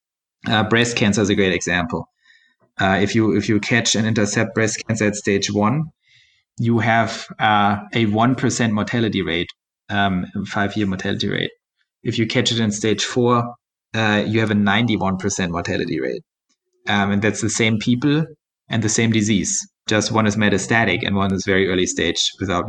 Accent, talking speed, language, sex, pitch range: German, 175 wpm, English, male, 105-125 Hz